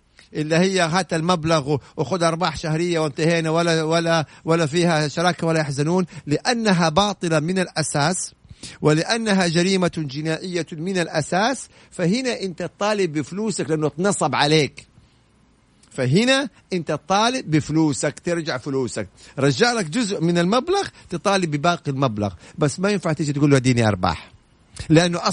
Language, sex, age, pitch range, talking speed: Arabic, male, 50-69, 140-185 Hz, 130 wpm